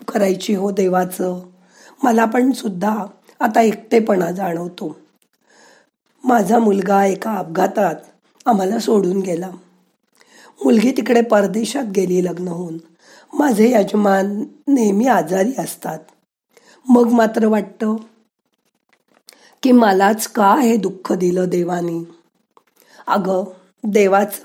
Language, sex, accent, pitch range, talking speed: Marathi, female, native, 185-230 Hz, 95 wpm